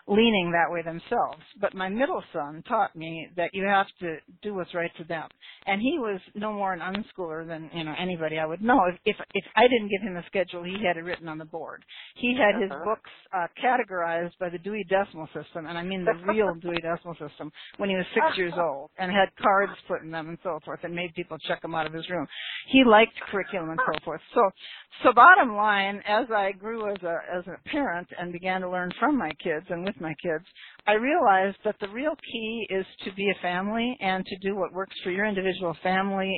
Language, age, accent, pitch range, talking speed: English, 50-69, American, 175-210 Hz, 235 wpm